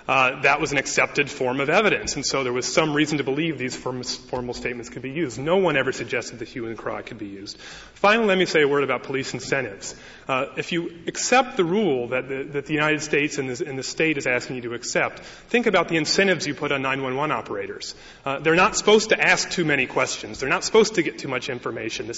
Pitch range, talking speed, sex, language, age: 130-170 Hz, 240 wpm, male, English, 30-49